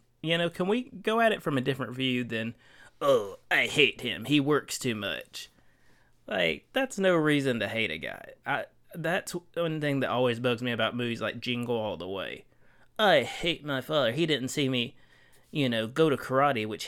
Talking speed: 205 wpm